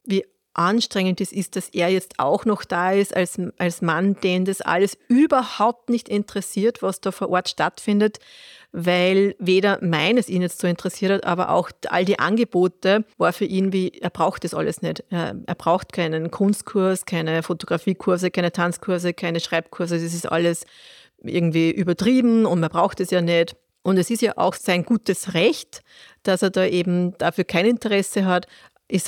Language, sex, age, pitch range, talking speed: German, female, 30-49, 175-200 Hz, 175 wpm